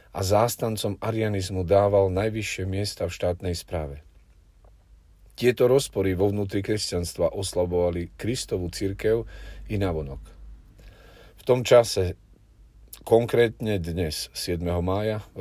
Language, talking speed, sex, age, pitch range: Slovak, 110 wpm, male, 40-59, 90-110 Hz